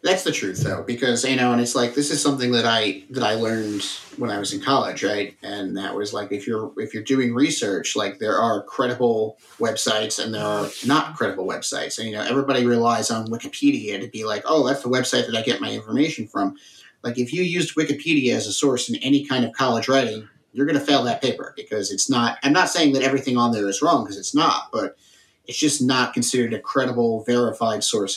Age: 30-49